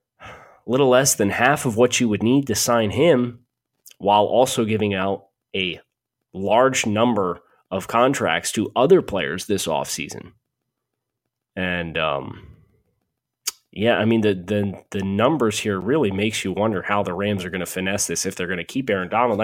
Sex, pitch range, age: male, 95-120 Hz, 20-39